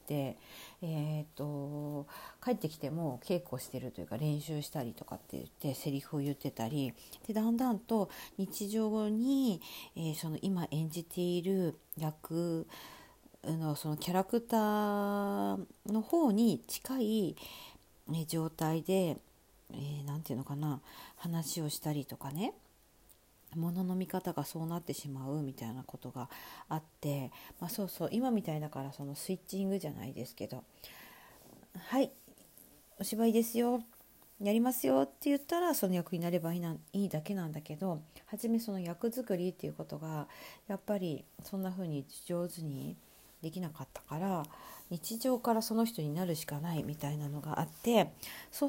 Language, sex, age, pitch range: Japanese, female, 50-69, 150-205 Hz